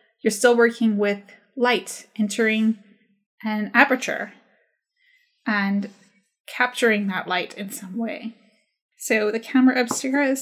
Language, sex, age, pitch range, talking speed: English, female, 20-39, 220-280 Hz, 115 wpm